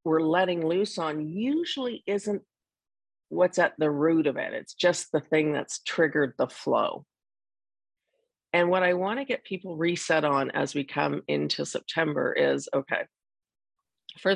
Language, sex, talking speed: English, female, 155 wpm